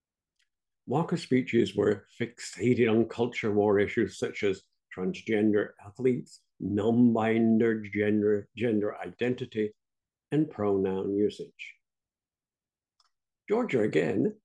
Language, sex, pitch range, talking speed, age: English, male, 105-130 Hz, 85 wpm, 60-79